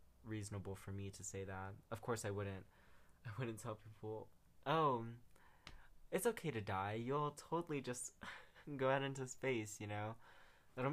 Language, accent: English, American